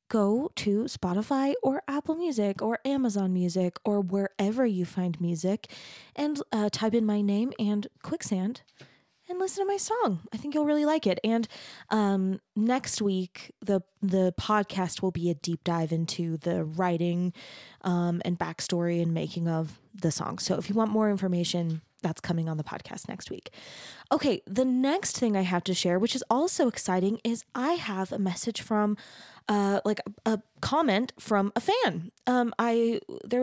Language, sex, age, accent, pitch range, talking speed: English, female, 20-39, American, 190-235 Hz, 175 wpm